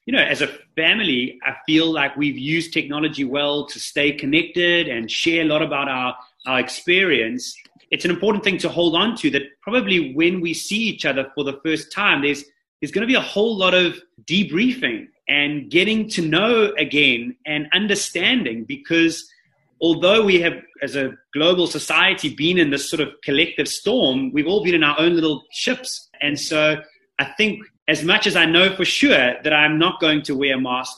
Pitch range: 140-190 Hz